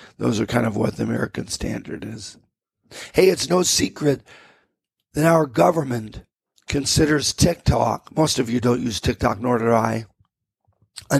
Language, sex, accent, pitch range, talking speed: English, male, American, 120-145 Hz, 150 wpm